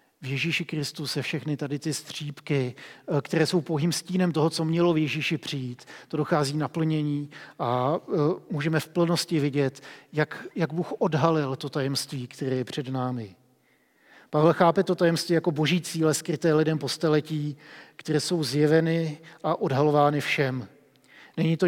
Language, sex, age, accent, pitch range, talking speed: Czech, male, 40-59, native, 145-165 Hz, 150 wpm